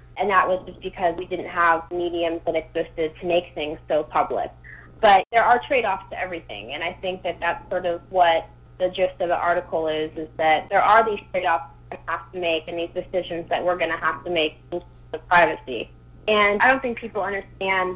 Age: 20-39